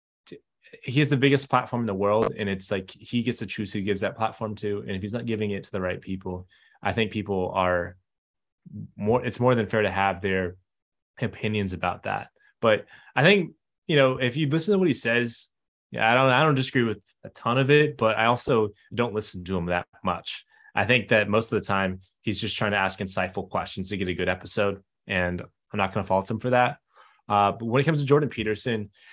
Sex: male